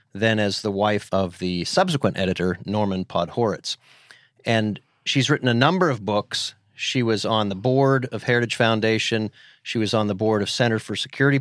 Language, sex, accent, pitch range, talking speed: English, male, American, 105-135 Hz, 180 wpm